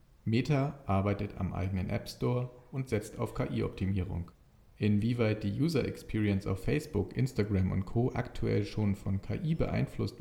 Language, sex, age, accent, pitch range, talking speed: German, male, 40-59, German, 100-120 Hz, 135 wpm